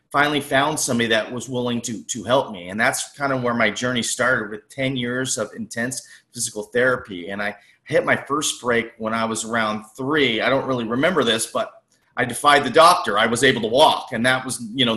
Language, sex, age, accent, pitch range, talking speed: English, male, 30-49, American, 115-135 Hz, 225 wpm